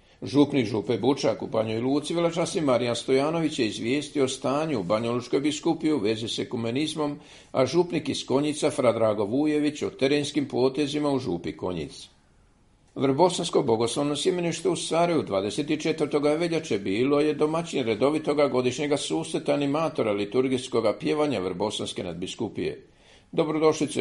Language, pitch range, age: Croatian, 125-150 Hz, 50-69